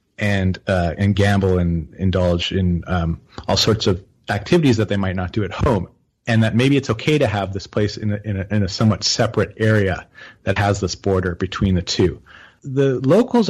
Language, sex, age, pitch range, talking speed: English, male, 30-49, 100-125 Hz, 205 wpm